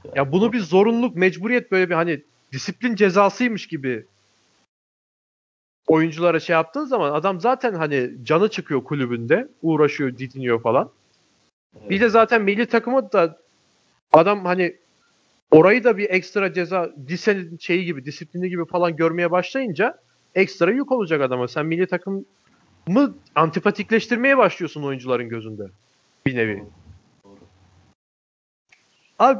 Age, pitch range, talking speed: 40-59, 145-215 Hz, 120 wpm